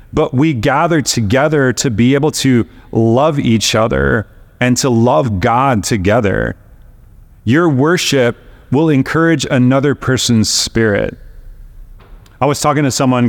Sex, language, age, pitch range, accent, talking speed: male, English, 30-49, 115-150 Hz, American, 125 wpm